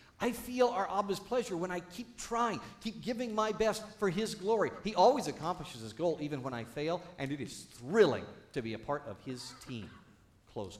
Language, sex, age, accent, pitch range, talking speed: English, male, 50-69, American, 120-180 Hz, 205 wpm